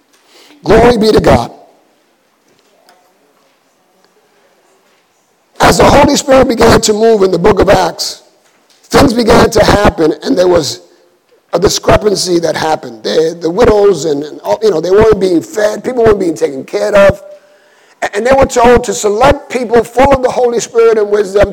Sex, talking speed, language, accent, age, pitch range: male, 165 wpm, English, American, 50-69, 195-265 Hz